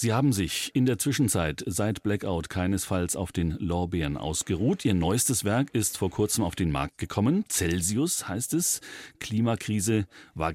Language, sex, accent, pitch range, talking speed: German, male, German, 95-120 Hz, 160 wpm